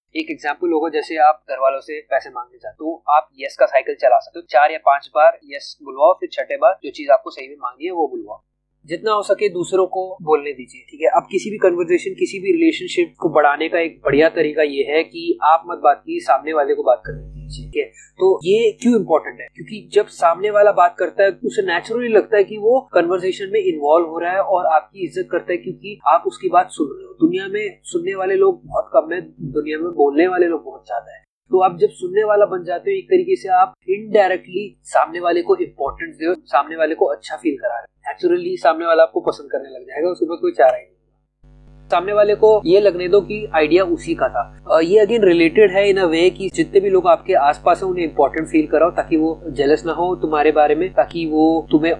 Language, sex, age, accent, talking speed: Hindi, male, 30-49, native, 240 wpm